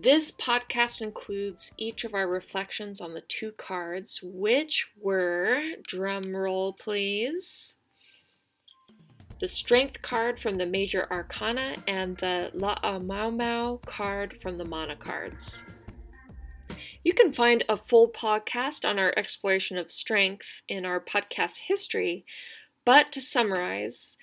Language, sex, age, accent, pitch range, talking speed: English, female, 20-39, American, 185-240 Hz, 125 wpm